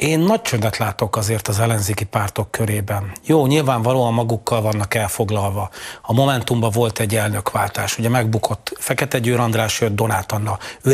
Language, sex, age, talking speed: Hungarian, male, 40-59, 155 wpm